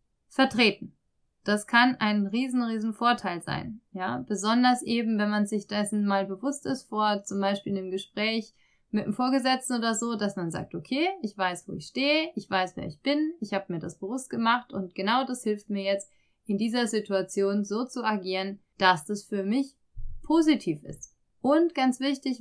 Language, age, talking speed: German, 30-49, 185 wpm